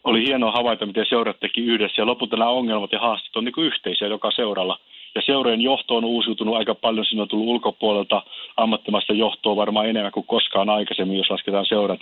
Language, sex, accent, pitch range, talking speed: Finnish, male, native, 105-115 Hz, 180 wpm